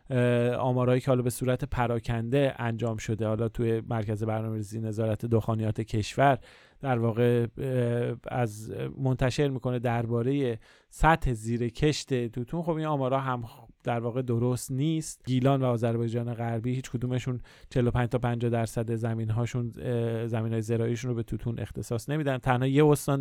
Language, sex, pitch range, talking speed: Persian, male, 115-135 Hz, 145 wpm